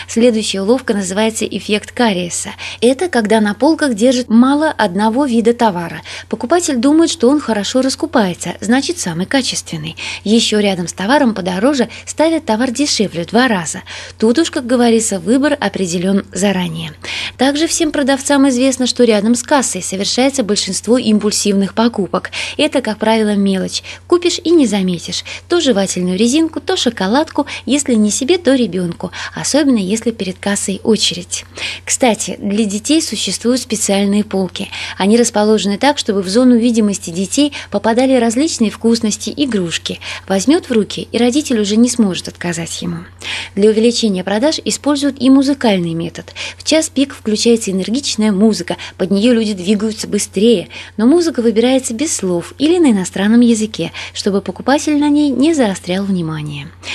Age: 20-39